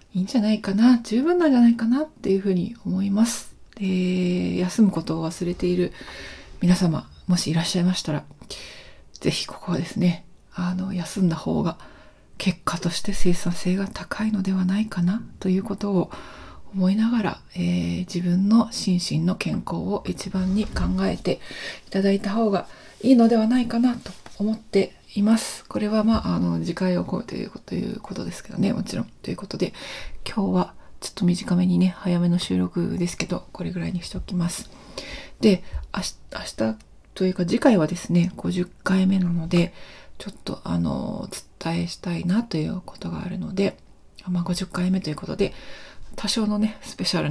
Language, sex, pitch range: Japanese, female, 175-205 Hz